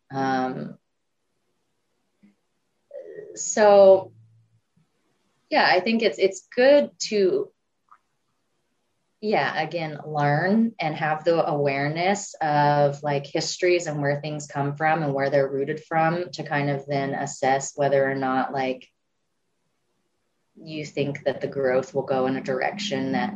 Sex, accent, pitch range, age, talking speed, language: female, American, 145-185 Hz, 20-39, 125 wpm, English